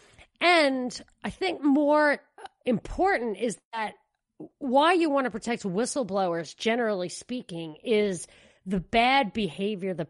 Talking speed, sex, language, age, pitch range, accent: 120 wpm, female, English, 40-59, 190-250 Hz, American